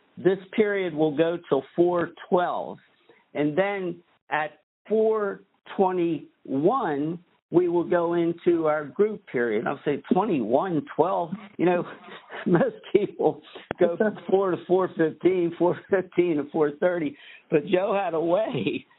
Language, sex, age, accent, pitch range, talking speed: English, male, 60-79, American, 140-180 Hz, 140 wpm